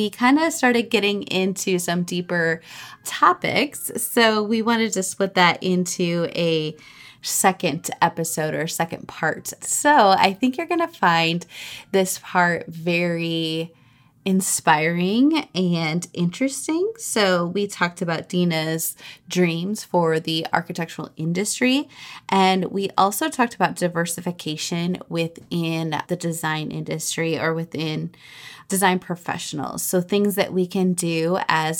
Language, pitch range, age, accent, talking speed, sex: English, 165-195 Hz, 20-39, American, 125 wpm, female